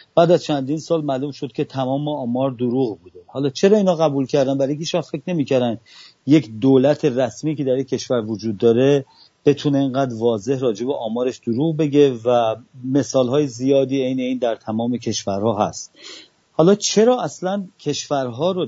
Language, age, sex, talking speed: English, 40-59, male, 165 wpm